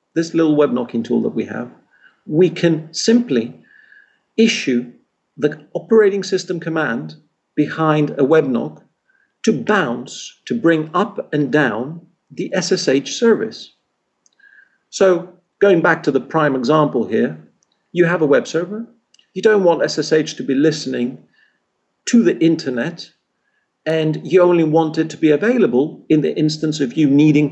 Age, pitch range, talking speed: 50-69, 140-185 Hz, 145 wpm